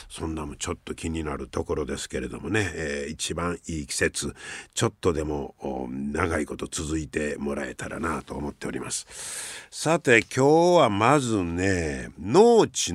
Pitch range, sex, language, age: 90-135 Hz, male, Japanese, 50-69